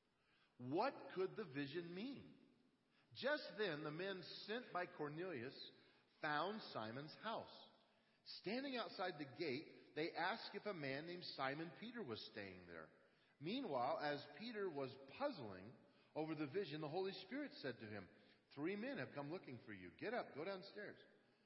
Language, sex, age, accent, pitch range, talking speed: English, male, 50-69, American, 135-190 Hz, 155 wpm